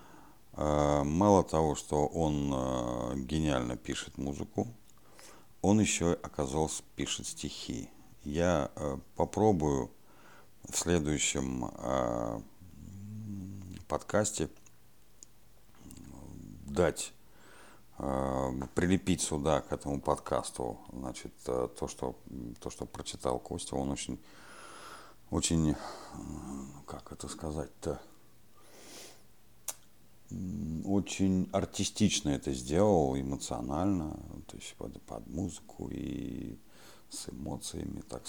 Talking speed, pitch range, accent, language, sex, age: 75 wpm, 70-95 Hz, native, Russian, male, 50-69